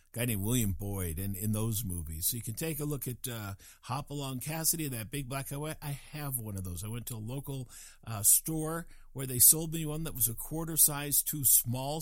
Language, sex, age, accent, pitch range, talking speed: English, male, 50-69, American, 115-160 Hz, 235 wpm